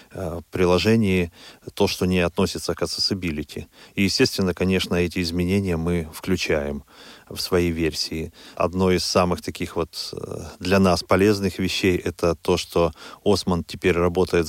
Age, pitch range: 30-49, 85-95 Hz